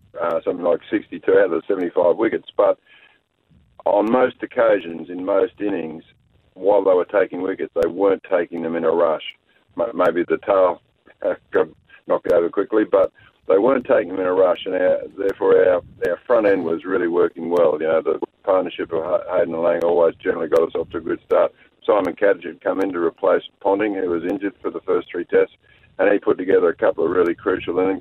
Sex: male